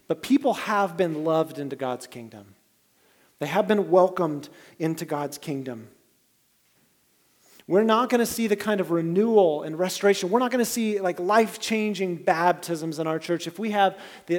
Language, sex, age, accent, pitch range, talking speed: English, male, 30-49, American, 150-195 Hz, 165 wpm